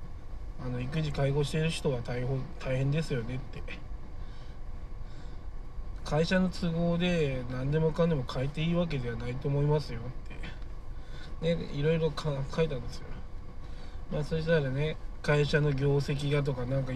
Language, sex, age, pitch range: Japanese, male, 20-39, 100-150 Hz